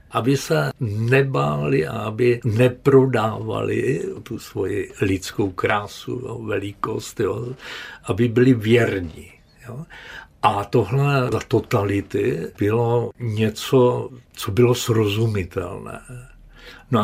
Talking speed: 85 wpm